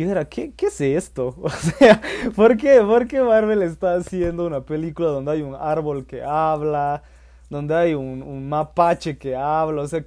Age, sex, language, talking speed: 20-39, male, Spanish, 175 wpm